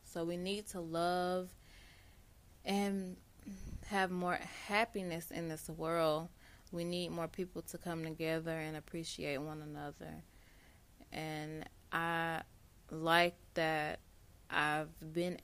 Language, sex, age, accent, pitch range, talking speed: English, female, 20-39, American, 155-180 Hz, 115 wpm